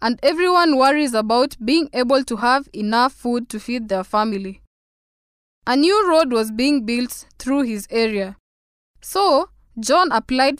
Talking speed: 145 wpm